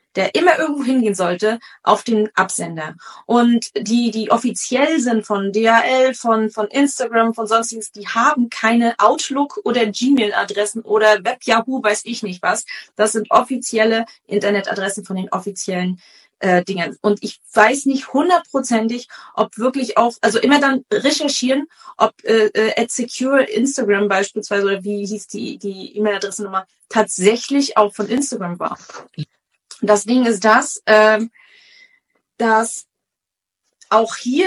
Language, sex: German, female